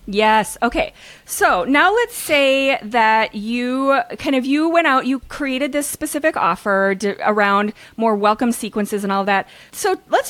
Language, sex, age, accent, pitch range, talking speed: English, female, 30-49, American, 200-275 Hz, 155 wpm